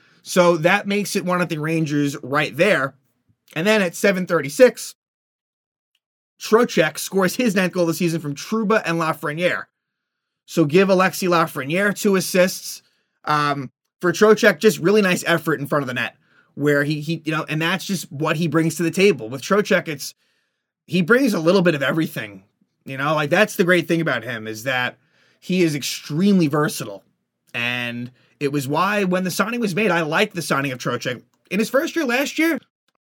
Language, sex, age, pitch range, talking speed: English, male, 30-49, 155-205 Hz, 190 wpm